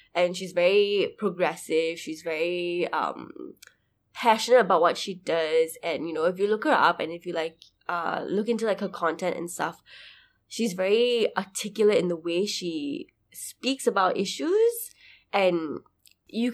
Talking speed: 160 wpm